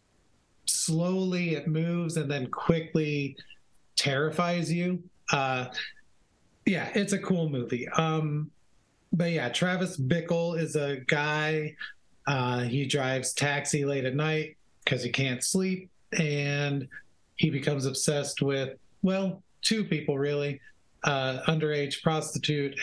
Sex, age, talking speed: male, 30-49, 120 wpm